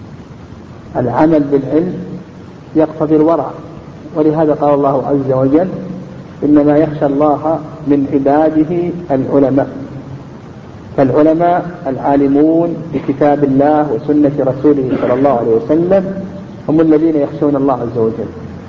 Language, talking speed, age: Arabic, 100 wpm, 50-69